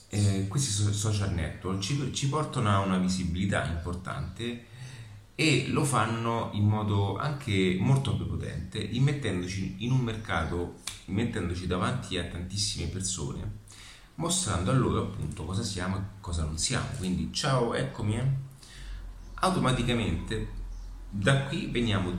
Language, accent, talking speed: Italian, native, 125 wpm